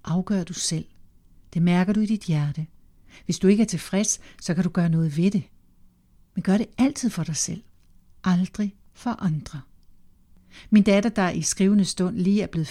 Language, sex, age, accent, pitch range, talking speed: Danish, female, 60-79, native, 165-210 Hz, 190 wpm